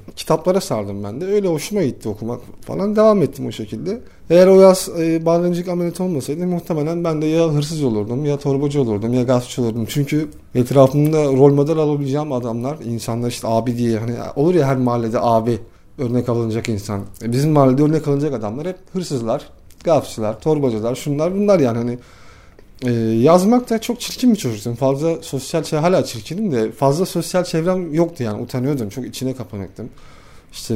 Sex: male